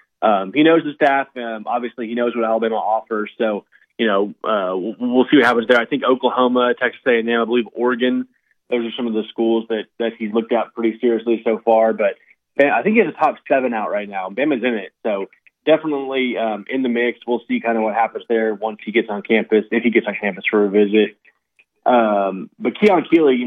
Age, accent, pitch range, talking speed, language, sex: 20-39, American, 110-125 Hz, 235 wpm, English, male